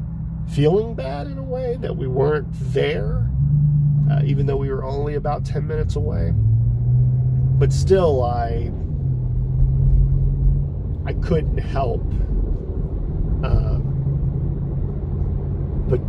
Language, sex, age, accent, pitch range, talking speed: English, male, 40-59, American, 95-125 Hz, 100 wpm